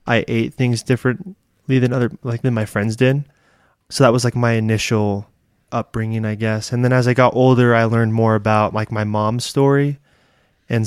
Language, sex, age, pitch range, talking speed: English, male, 20-39, 110-125 Hz, 195 wpm